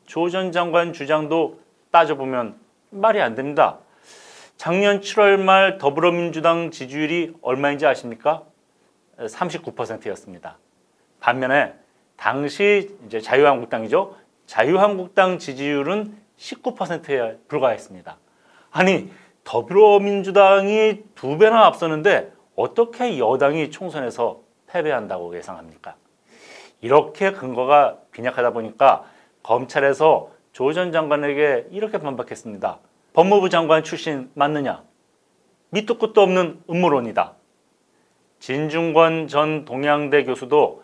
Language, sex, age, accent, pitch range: Korean, male, 40-59, native, 145-195 Hz